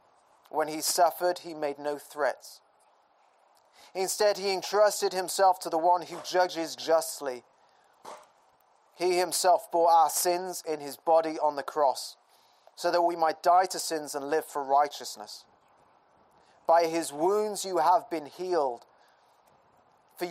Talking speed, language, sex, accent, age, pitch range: 140 wpm, English, male, British, 30-49, 155-200 Hz